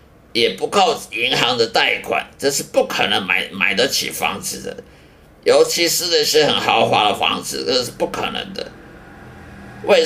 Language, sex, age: Chinese, male, 50-69